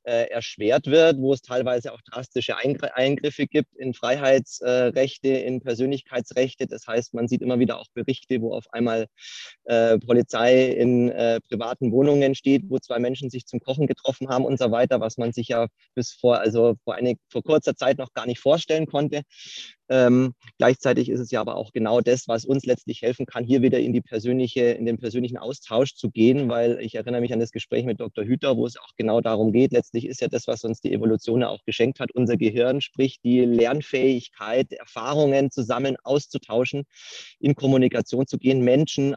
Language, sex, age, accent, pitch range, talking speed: German, male, 20-39, German, 115-130 Hz, 190 wpm